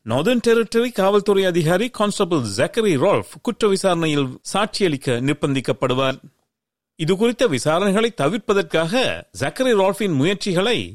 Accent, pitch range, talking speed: native, 150-225 Hz, 95 wpm